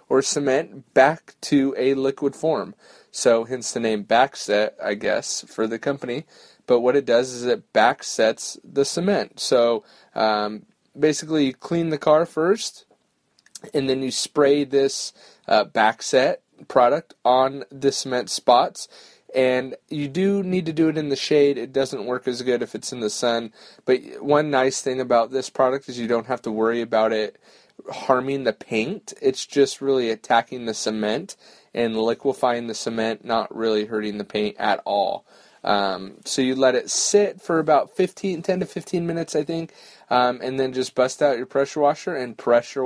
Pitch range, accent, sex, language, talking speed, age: 120-145 Hz, American, male, English, 180 wpm, 30-49